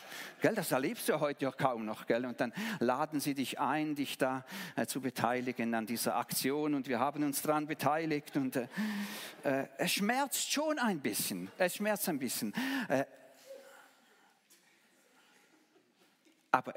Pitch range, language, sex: 145-210 Hz, German, male